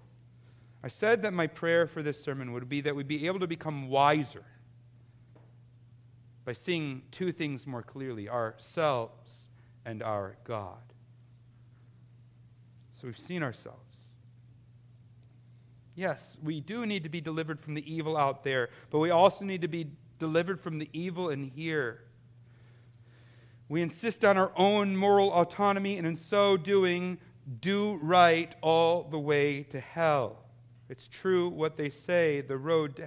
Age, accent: 40-59, American